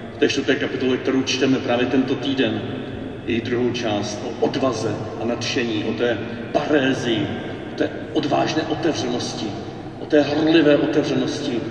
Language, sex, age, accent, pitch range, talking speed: Czech, male, 40-59, native, 120-145 Hz, 135 wpm